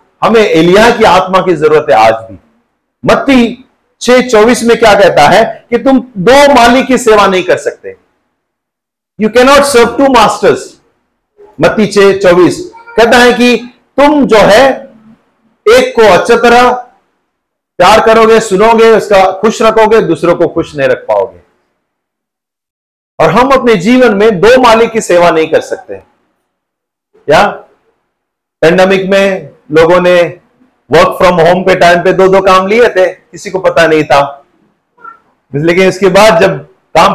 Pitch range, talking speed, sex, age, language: 180-250 Hz, 150 wpm, male, 50-69, Hindi